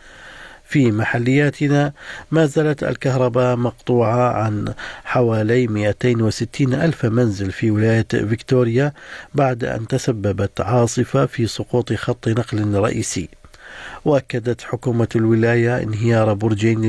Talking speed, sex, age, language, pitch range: 100 wpm, male, 50-69, Arabic, 110-125 Hz